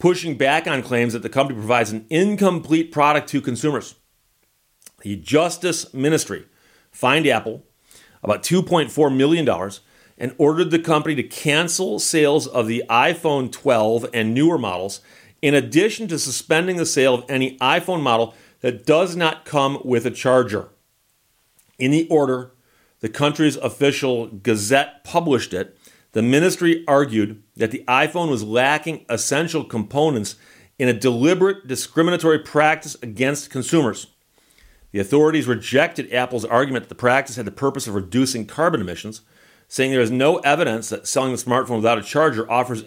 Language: English